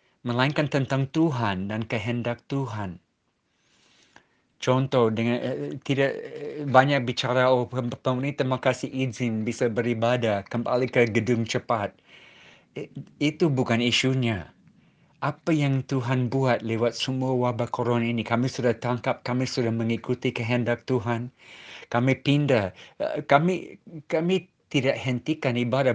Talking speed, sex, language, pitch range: 120 wpm, male, Indonesian, 115-140 Hz